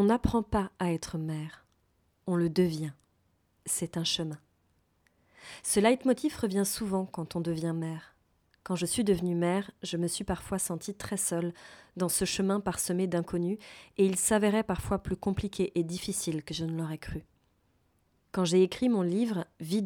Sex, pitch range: female, 170-195 Hz